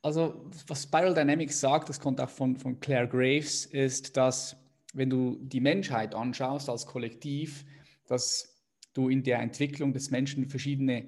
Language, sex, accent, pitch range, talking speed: German, male, German, 120-145 Hz, 155 wpm